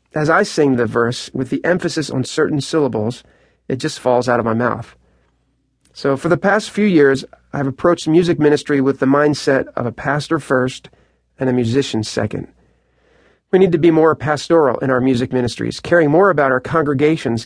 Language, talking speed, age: English, 185 wpm, 40-59